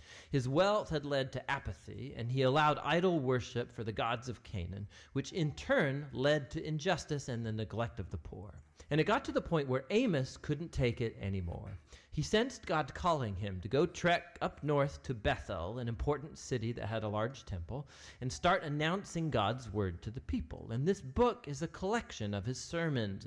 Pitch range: 105-150 Hz